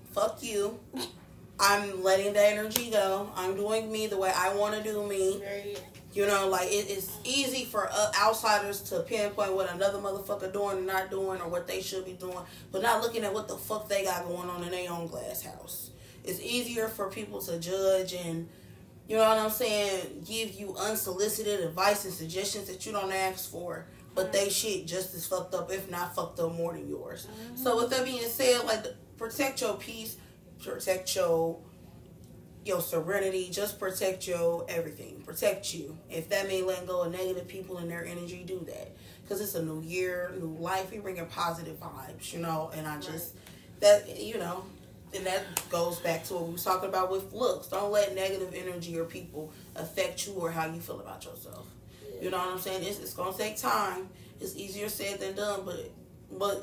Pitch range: 180-205 Hz